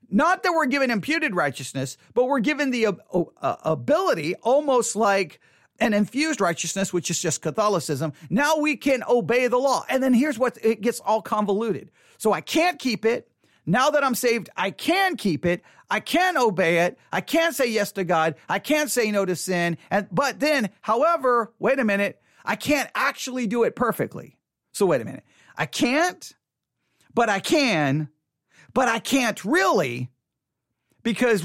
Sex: male